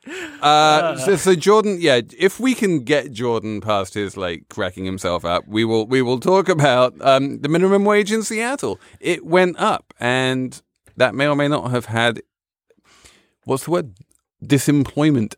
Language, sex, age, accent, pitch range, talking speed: English, male, 30-49, British, 105-150 Hz, 170 wpm